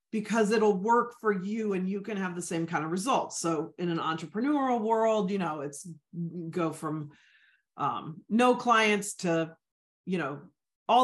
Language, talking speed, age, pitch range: English, 170 wpm, 40-59, 185-245 Hz